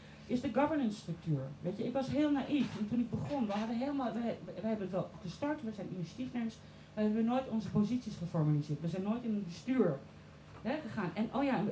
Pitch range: 165-230 Hz